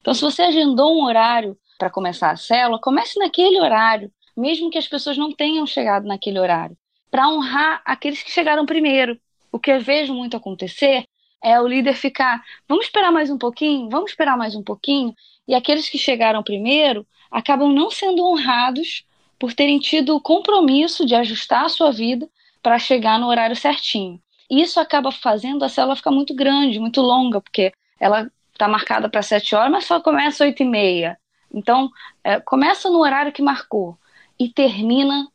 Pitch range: 225-285 Hz